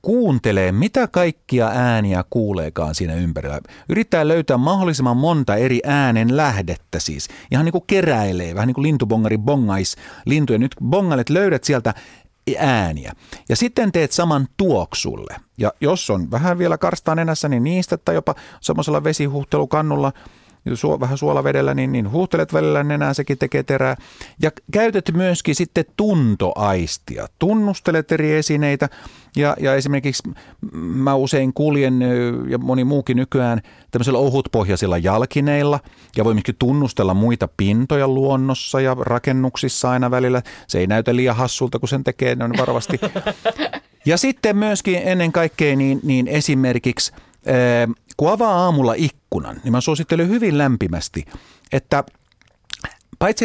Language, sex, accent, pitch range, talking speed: Finnish, male, native, 115-155 Hz, 135 wpm